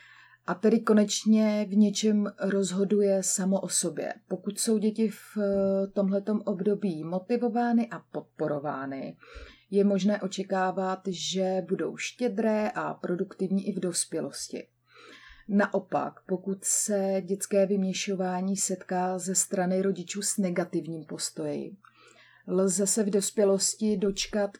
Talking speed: 110 wpm